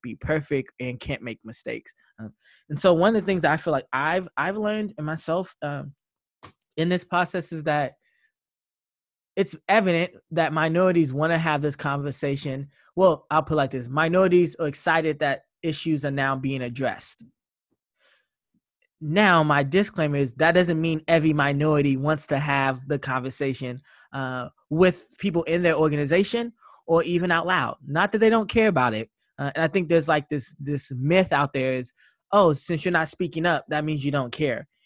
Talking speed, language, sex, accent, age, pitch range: 180 wpm, English, male, American, 20-39, 140-175 Hz